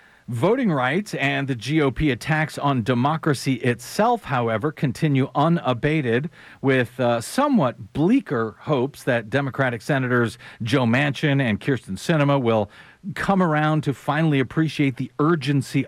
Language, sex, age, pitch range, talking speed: English, male, 40-59, 120-160 Hz, 125 wpm